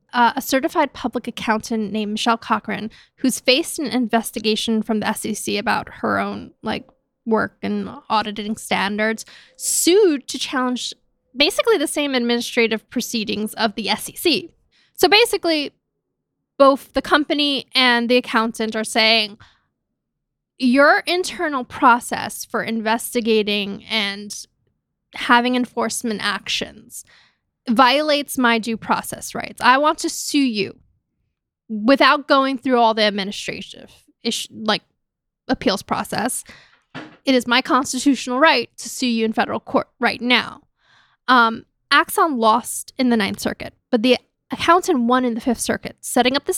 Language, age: English, 10-29